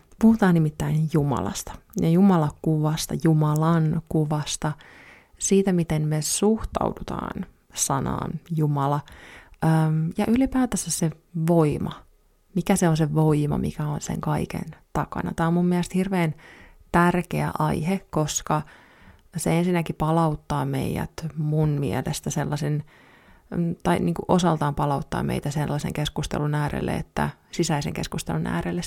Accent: native